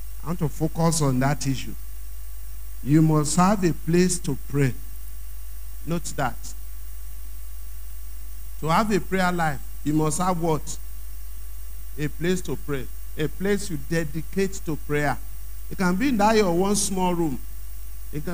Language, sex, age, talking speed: English, male, 50-69, 145 wpm